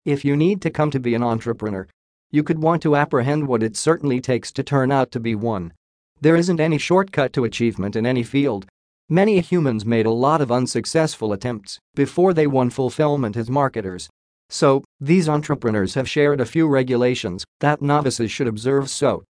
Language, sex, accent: English, male, American